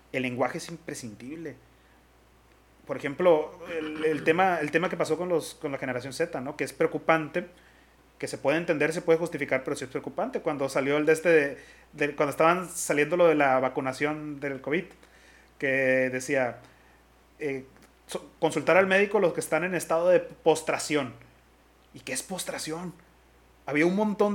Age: 30-49